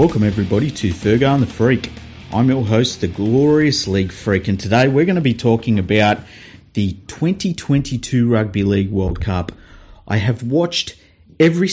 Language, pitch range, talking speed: English, 95-120 Hz, 165 wpm